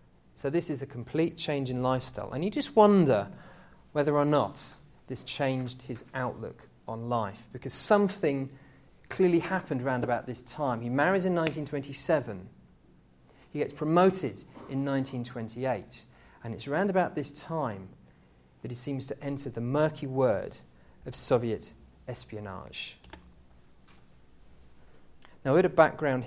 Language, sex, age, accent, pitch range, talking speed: English, male, 40-59, British, 115-145 Hz, 135 wpm